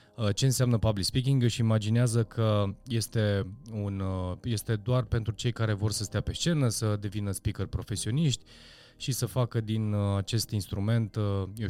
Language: Romanian